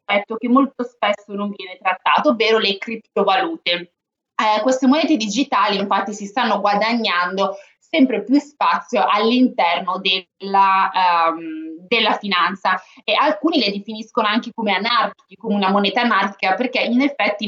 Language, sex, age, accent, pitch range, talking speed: Italian, female, 20-39, native, 195-245 Hz, 135 wpm